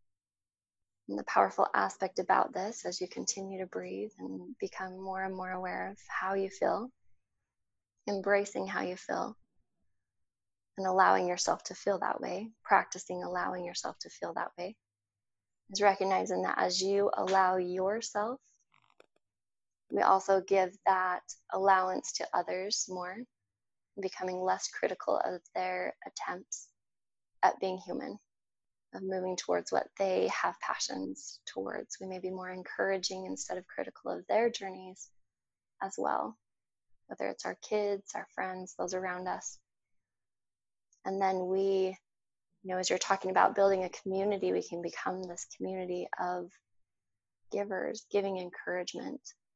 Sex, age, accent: female, 20-39, American